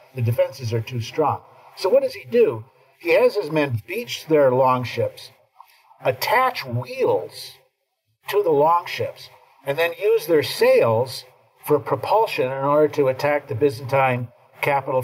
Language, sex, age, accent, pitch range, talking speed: English, male, 50-69, American, 120-190 Hz, 145 wpm